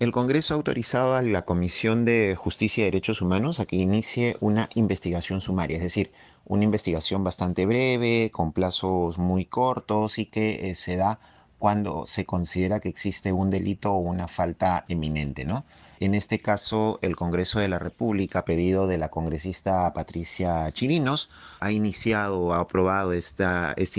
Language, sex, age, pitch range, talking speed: Spanish, male, 30-49, 90-110 Hz, 160 wpm